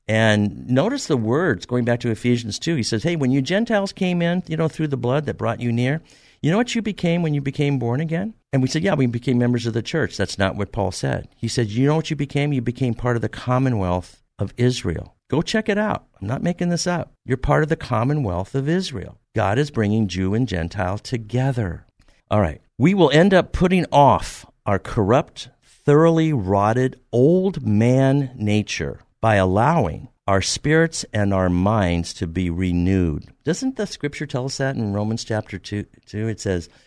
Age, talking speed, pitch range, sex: 50-69, 210 wpm, 100-145 Hz, male